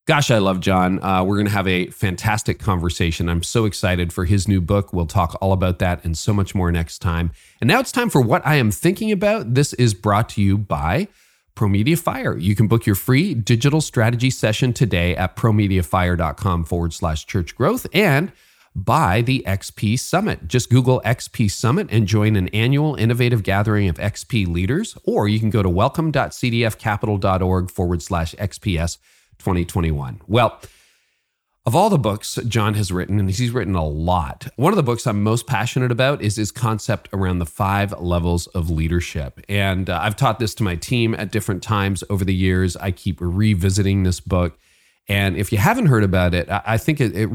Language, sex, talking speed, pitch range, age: English, male, 195 wpm, 90-115 Hz, 40-59